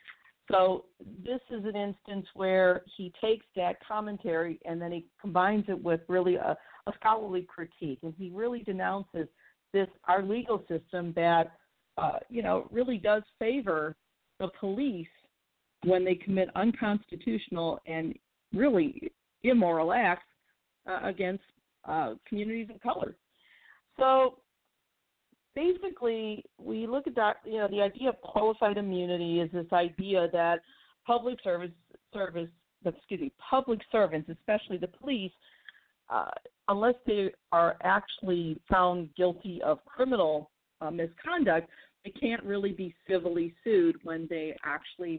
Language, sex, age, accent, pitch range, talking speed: English, female, 50-69, American, 170-220 Hz, 130 wpm